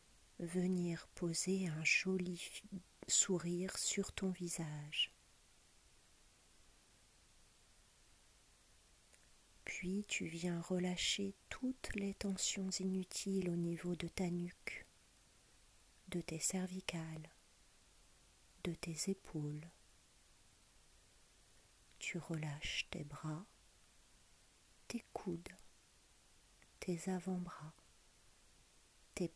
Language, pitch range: French, 115-185 Hz